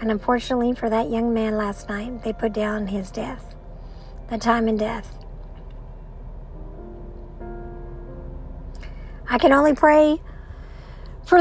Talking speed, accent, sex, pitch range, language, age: 115 wpm, American, male, 200-255 Hz, English, 50-69